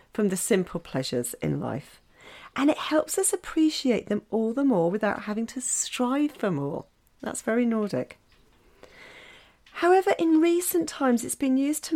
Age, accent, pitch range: 40-59, British, 190-300 Hz